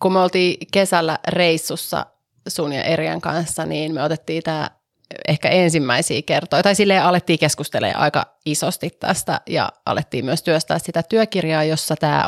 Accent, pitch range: native, 155-200 Hz